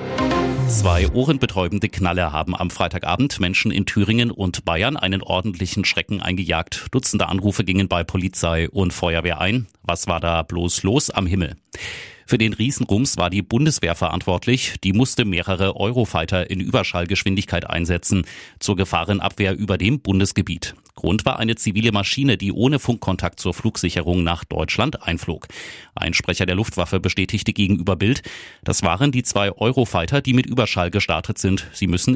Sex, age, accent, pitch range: male, 30-49, German, 90-110 Hz